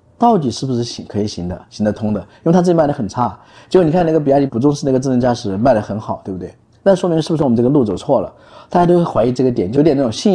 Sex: male